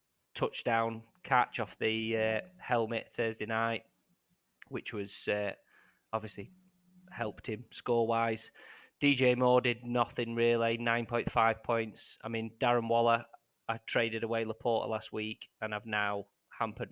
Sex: male